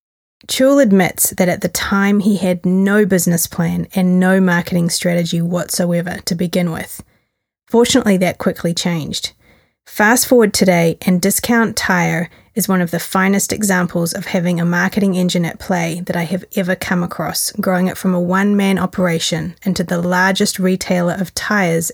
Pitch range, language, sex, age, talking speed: 175-200 Hz, English, female, 30-49, 165 wpm